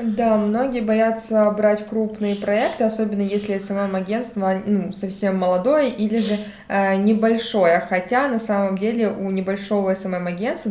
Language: Russian